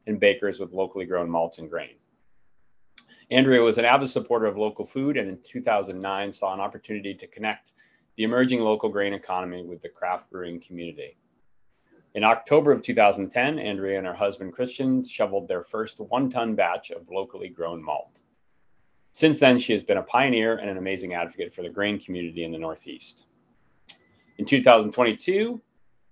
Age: 30-49